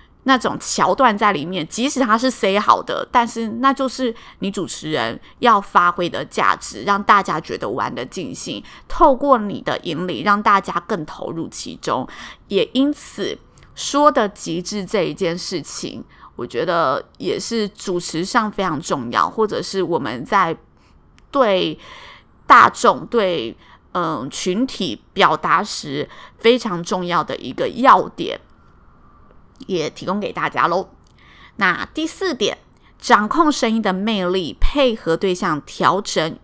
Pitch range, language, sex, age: 185-245 Hz, Chinese, female, 20-39